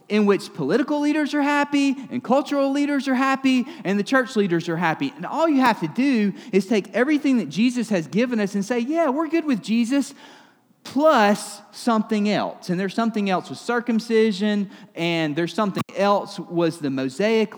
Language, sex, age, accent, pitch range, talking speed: English, male, 30-49, American, 190-245 Hz, 185 wpm